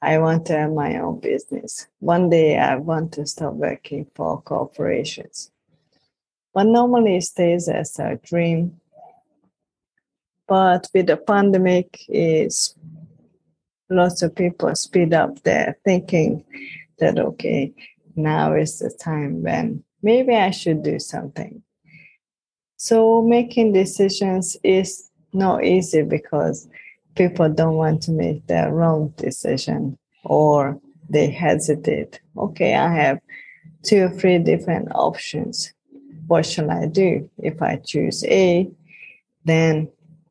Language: English